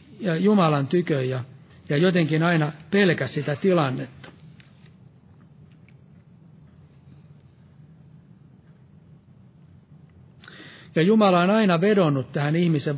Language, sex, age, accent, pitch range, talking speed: Finnish, male, 60-79, native, 145-175 Hz, 75 wpm